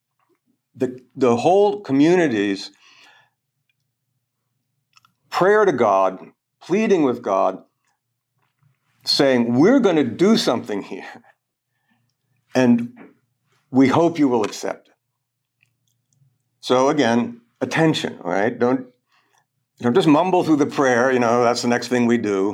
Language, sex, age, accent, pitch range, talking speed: English, male, 60-79, American, 120-135 Hz, 115 wpm